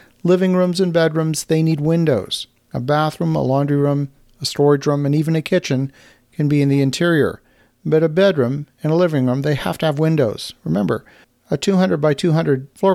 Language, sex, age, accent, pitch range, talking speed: English, male, 50-69, American, 135-165 Hz, 195 wpm